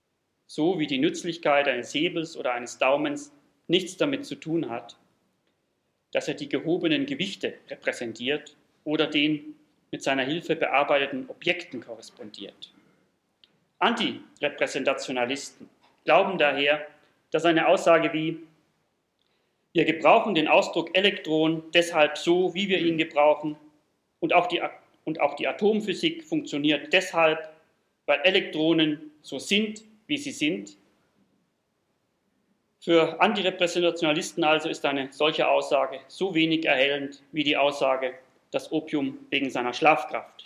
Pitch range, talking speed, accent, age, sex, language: 145-180 Hz, 120 wpm, German, 40-59, male, German